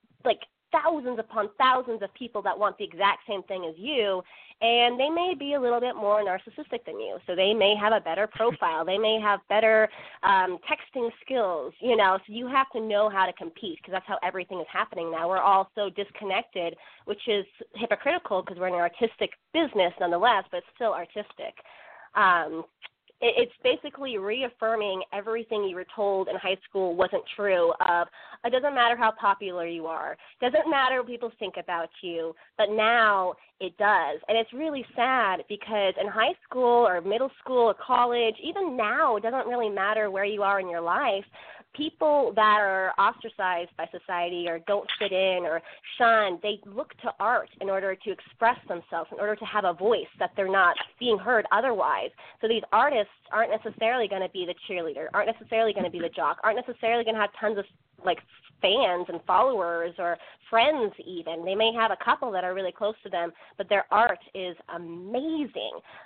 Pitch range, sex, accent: 185-240 Hz, female, American